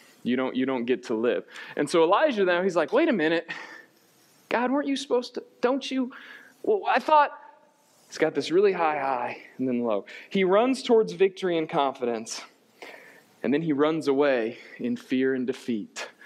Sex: male